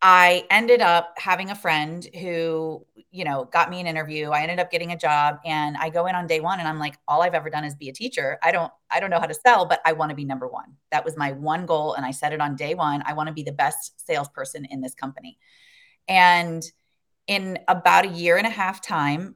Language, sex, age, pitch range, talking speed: English, female, 30-49, 155-215 Hz, 255 wpm